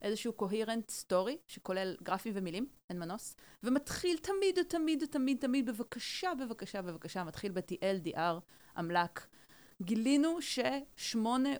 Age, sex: 30-49, female